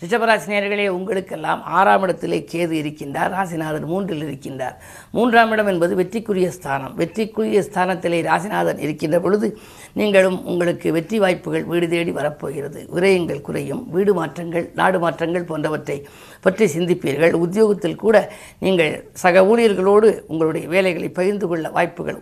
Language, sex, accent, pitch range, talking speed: Tamil, female, native, 160-195 Hz, 120 wpm